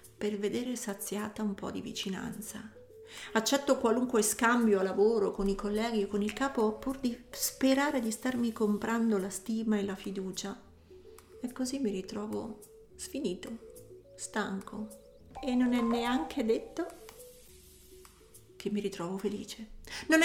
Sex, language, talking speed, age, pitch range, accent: female, Italian, 135 wpm, 40-59, 210-260 Hz, native